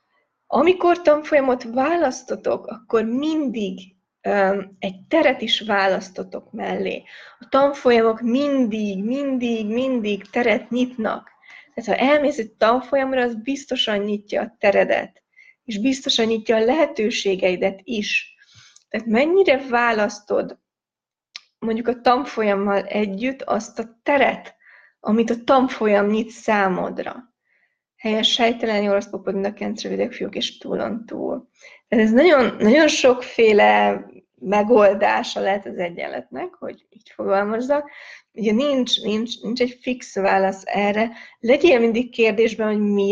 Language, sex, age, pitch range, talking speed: Hungarian, female, 20-39, 205-260 Hz, 115 wpm